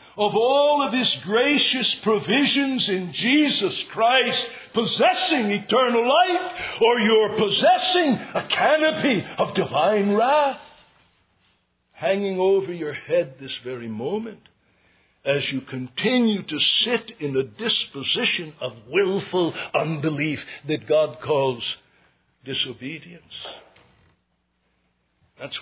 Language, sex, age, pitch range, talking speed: English, male, 60-79, 150-235 Hz, 100 wpm